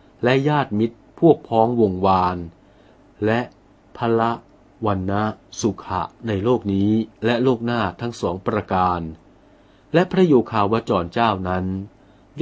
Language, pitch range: Thai, 95-125 Hz